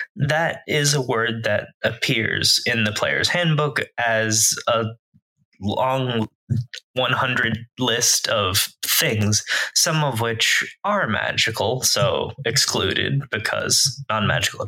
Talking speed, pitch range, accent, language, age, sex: 105 wpm, 105-140 Hz, American, English, 20-39, male